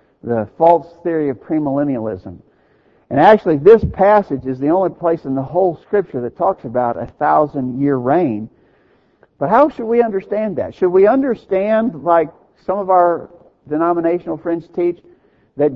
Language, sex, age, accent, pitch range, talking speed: English, male, 60-79, American, 150-205 Hz, 150 wpm